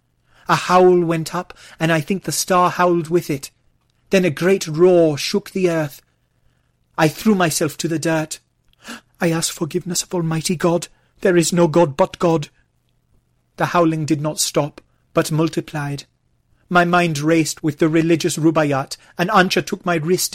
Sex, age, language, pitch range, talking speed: male, 30-49, English, 145-175 Hz, 165 wpm